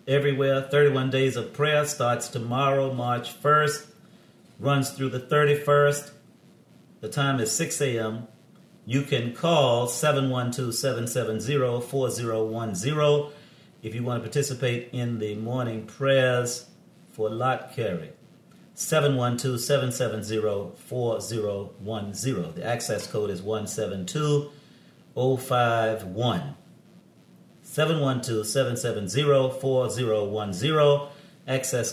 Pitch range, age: 110-140 Hz, 40-59